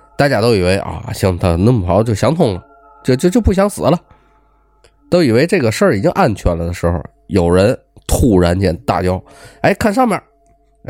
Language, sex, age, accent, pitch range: Chinese, male, 20-39, native, 95-140 Hz